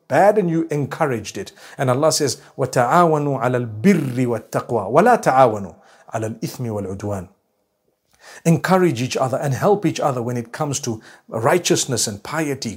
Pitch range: 120-170 Hz